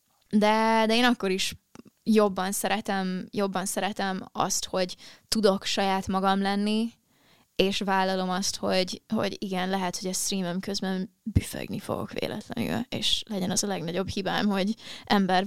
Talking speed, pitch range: 145 wpm, 190-215 Hz